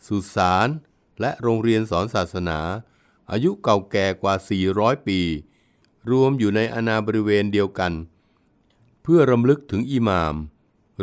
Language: Thai